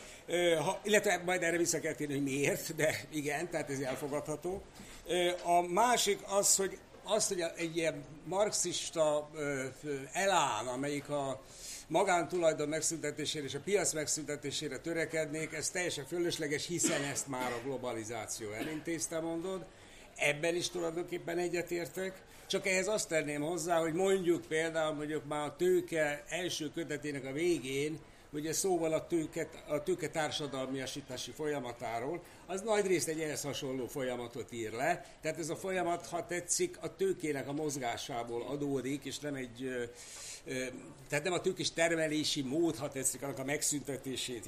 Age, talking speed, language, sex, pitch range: 60-79, 140 wpm, Hungarian, male, 145-175 Hz